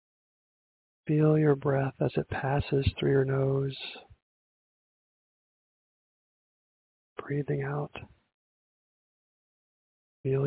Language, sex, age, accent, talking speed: English, male, 50-69, American, 70 wpm